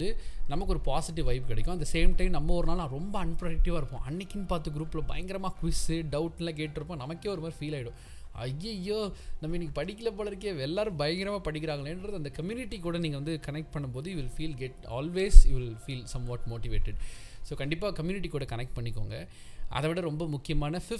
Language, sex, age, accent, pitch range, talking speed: Tamil, male, 20-39, native, 125-170 Hz, 30 wpm